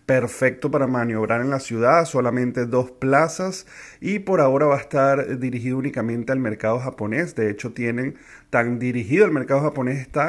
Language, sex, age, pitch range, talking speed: Spanish, male, 30-49, 115-135 Hz, 170 wpm